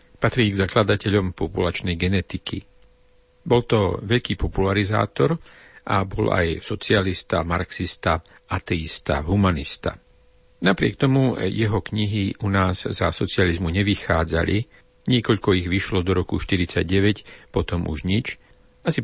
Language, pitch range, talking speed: Slovak, 90-110 Hz, 110 wpm